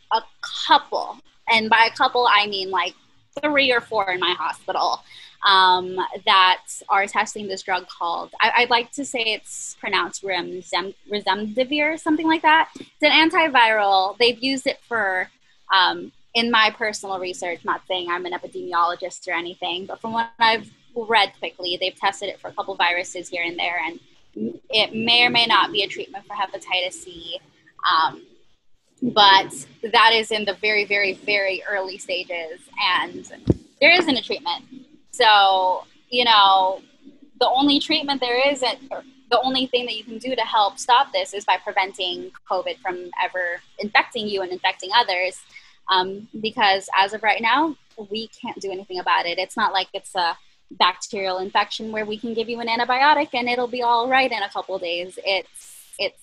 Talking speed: 175 wpm